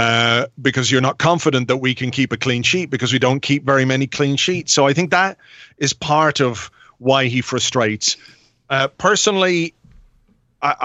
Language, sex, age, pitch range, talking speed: English, male, 40-59, 125-150 Hz, 185 wpm